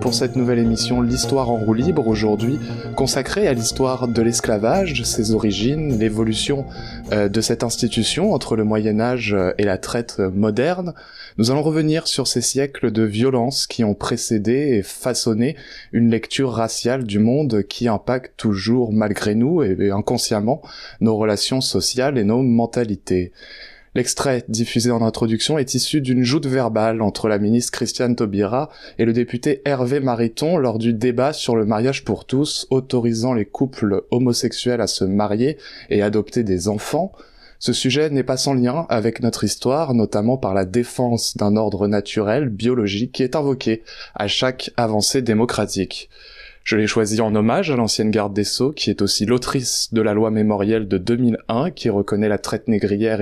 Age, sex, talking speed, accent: 20-39, male, 165 wpm, French